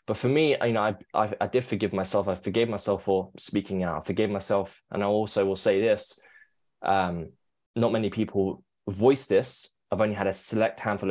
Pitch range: 95-110 Hz